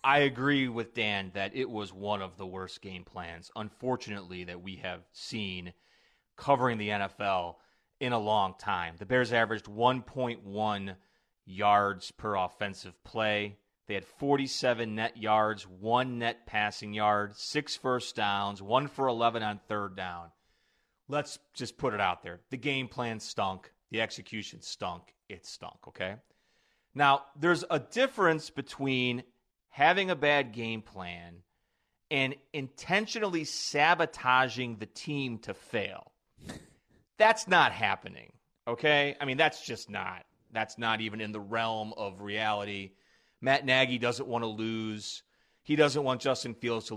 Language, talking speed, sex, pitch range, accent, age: English, 145 wpm, male, 105-135 Hz, American, 30-49